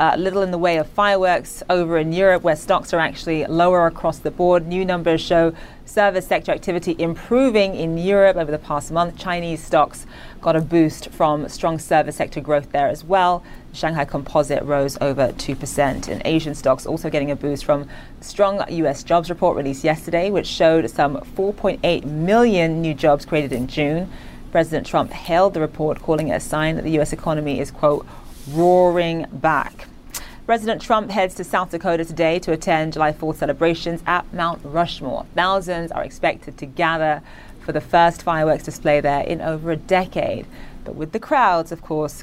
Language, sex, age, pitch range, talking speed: English, female, 30-49, 150-175 Hz, 180 wpm